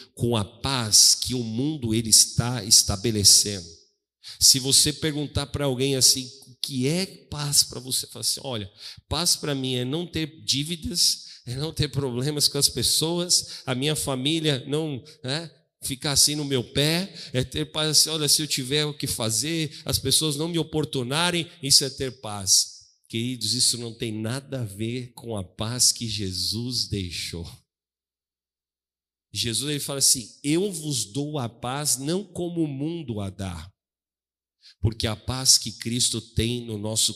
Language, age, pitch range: Portuguese, 50-69, 115-175 Hz